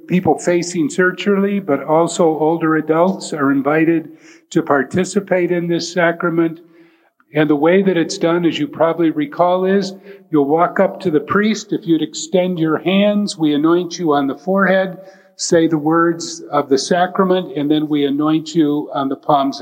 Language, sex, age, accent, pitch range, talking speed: English, male, 50-69, American, 150-185 Hz, 170 wpm